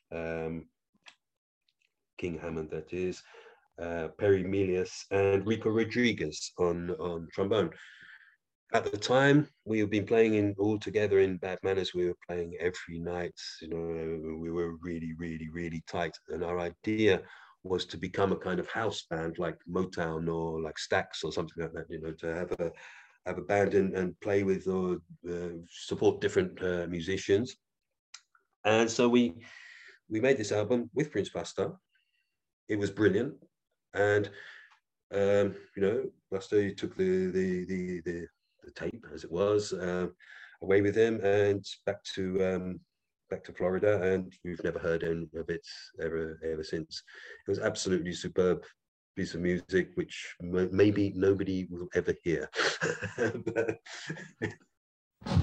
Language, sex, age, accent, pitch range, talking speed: English, male, 40-59, British, 85-100 Hz, 155 wpm